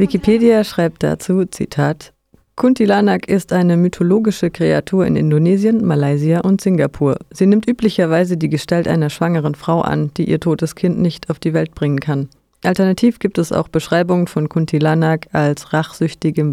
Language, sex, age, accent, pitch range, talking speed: German, female, 30-49, German, 155-190 Hz, 155 wpm